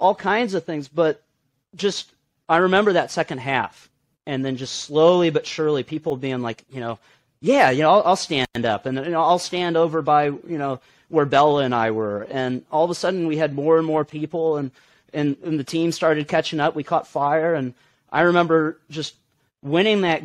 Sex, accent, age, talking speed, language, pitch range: male, American, 30-49, 205 wpm, English, 125-160 Hz